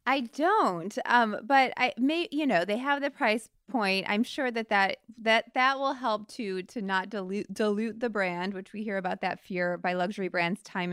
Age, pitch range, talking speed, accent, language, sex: 20-39, 185-240 Hz, 210 wpm, American, English, female